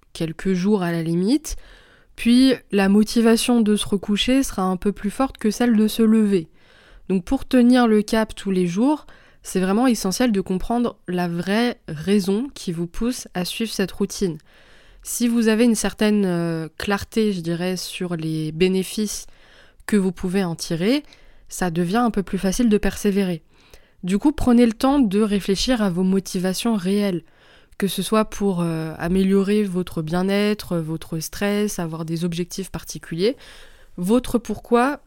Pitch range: 185-225 Hz